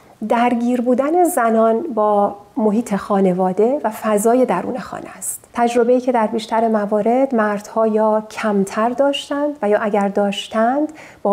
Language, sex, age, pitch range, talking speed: Persian, female, 40-59, 205-250 Hz, 130 wpm